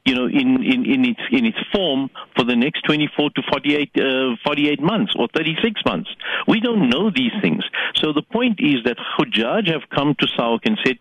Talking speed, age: 205 wpm, 50-69